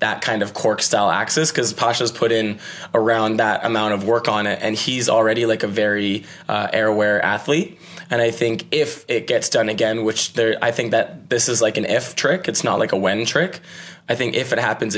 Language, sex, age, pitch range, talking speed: English, male, 20-39, 110-125 Hz, 225 wpm